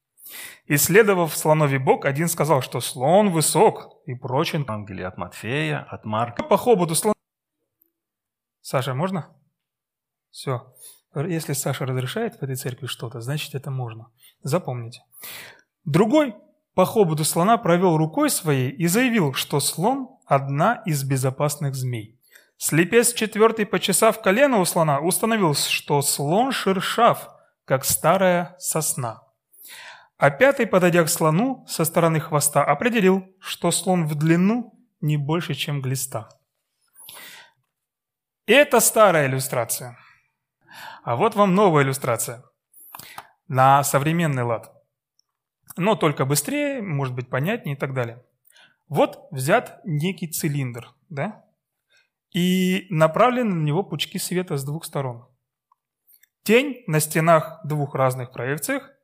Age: 30-49